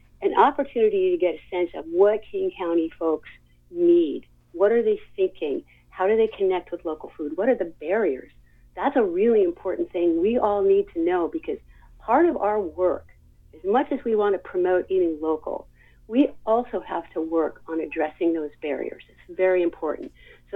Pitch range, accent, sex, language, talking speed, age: 160-220 Hz, American, female, English, 185 wpm, 50-69